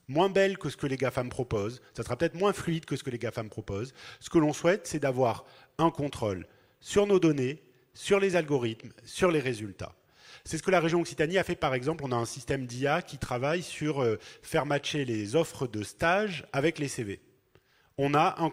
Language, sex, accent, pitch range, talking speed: French, male, French, 110-150 Hz, 215 wpm